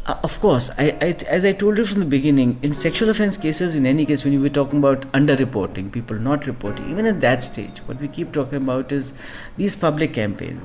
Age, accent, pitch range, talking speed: 50-69, native, 125-160 Hz, 235 wpm